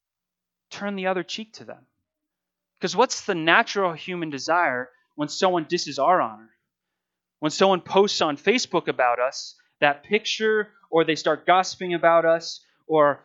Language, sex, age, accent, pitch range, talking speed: English, male, 20-39, American, 145-195 Hz, 150 wpm